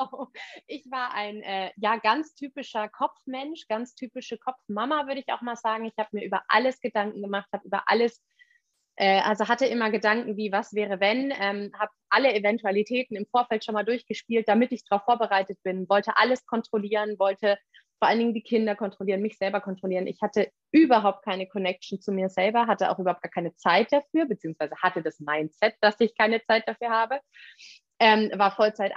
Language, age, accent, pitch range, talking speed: German, 30-49, German, 195-245 Hz, 185 wpm